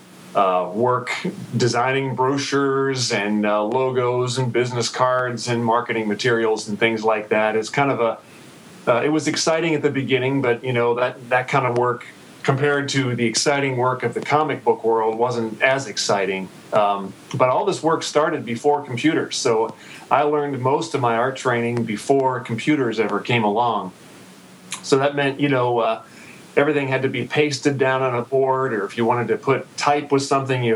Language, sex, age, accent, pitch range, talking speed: English, male, 40-59, American, 115-135 Hz, 185 wpm